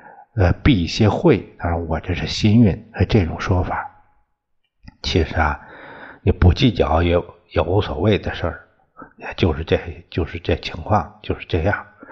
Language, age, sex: Chinese, 60-79, male